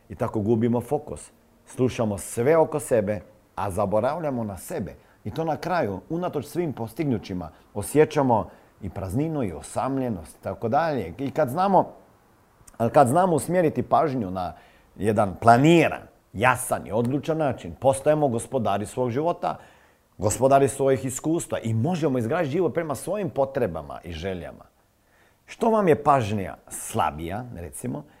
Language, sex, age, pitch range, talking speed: Croatian, male, 40-59, 100-135 Hz, 130 wpm